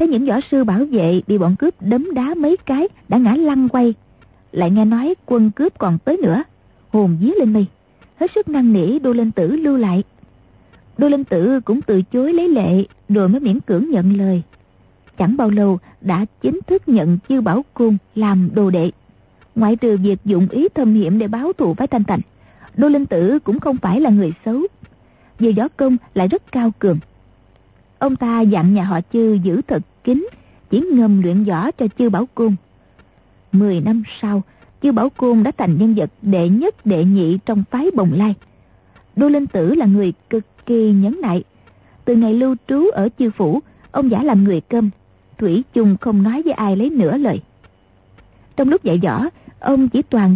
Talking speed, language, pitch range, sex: 200 wpm, Vietnamese, 190-255 Hz, female